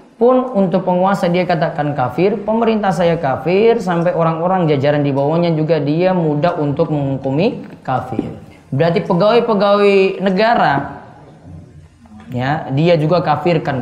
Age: 20-39